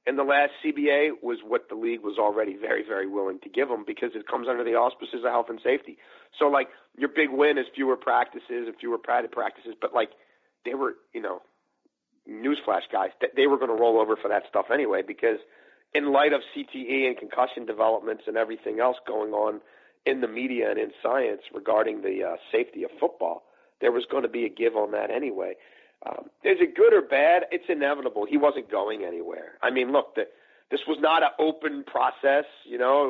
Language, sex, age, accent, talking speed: English, male, 50-69, American, 210 wpm